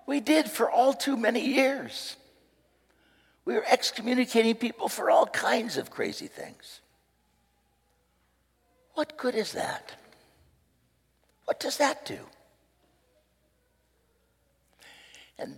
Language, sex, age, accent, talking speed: English, male, 60-79, American, 100 wpm